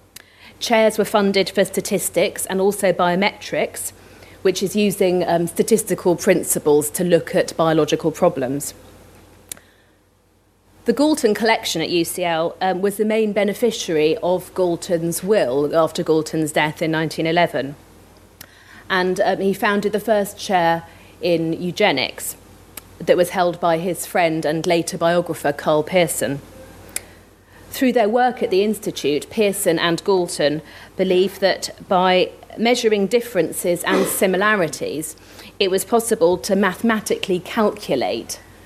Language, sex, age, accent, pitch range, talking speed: English, female, 40-59, British, 145-200 Hz, 125 wpm